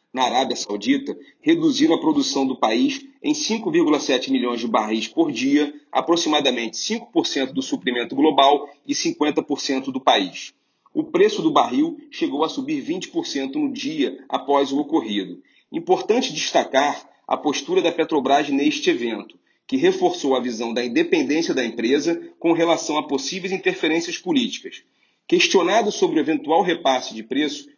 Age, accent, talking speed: 40-59, Brazilian, 145 wpm